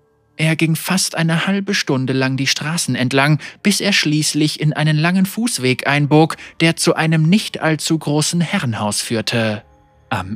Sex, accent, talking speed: male, German, 155 wpm